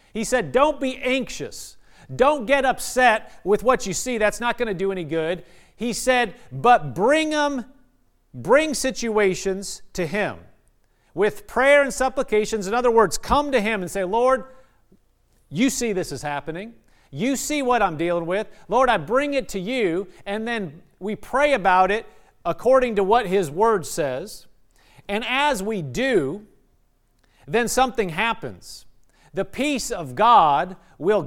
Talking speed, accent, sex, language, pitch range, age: 155 wpm, American, male, English, 170-245 Hz, 40-59